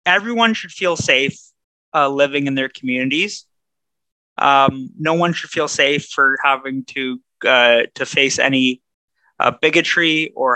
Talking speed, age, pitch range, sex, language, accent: 140 wpm, 20-39, 135-160 Hz, male, English, American